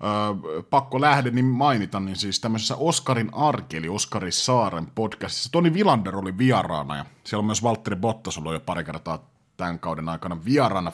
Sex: male